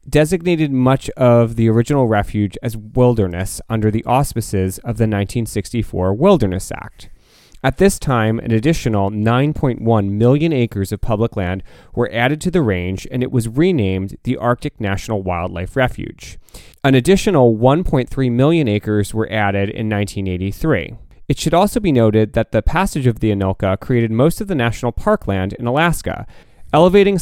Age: 30-49